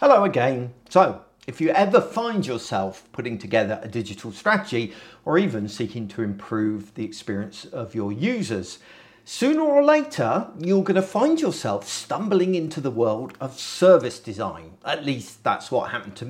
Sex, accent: male, British